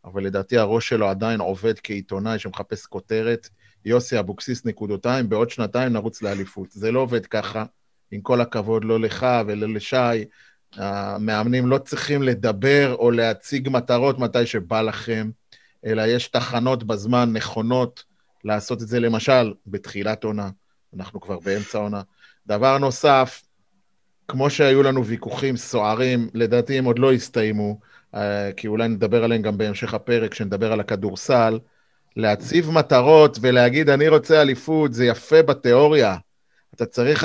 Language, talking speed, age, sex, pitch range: Hebrew, 140 wpm, 30-49, male, 115-155 Hz